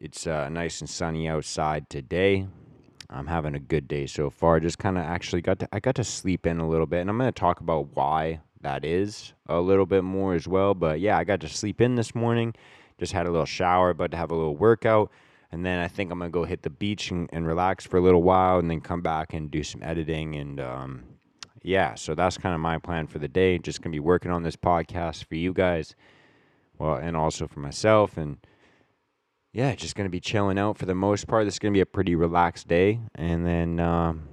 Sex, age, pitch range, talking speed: male, 20-39, 80-95 Hz, 245 wpm